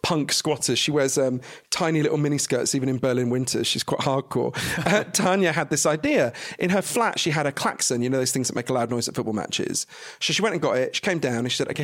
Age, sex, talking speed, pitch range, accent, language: 40-59, male, 270 wpm, 130-180 Hz, British, English